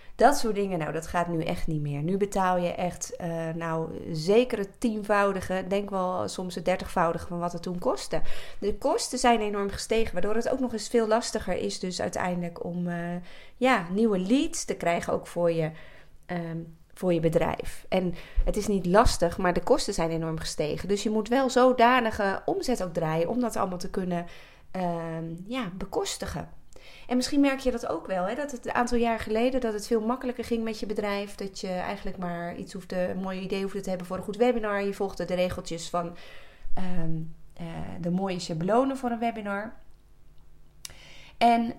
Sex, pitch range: female, 180-235 Hz